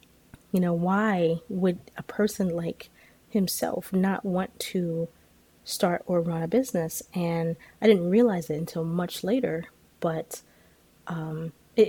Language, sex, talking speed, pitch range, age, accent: English, female, 135 wpm, 165-200 Hz, 20-39, American